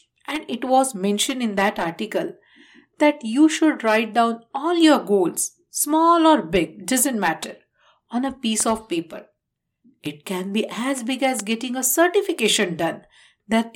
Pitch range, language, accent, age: 205-295 Hz, English, Indian, 60-79